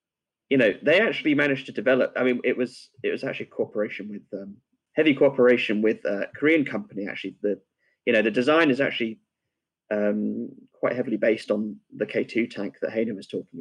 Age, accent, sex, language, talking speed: 30-49, British, male, English, 190 wpm